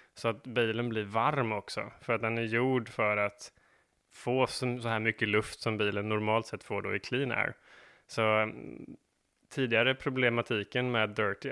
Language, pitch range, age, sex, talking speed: Swedish, 110-125 Hz, 20-39, male, 170 wpm